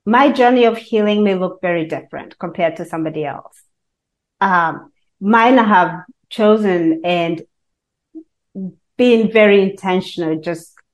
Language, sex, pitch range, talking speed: English, female, 170-225 Hz, 120 wpm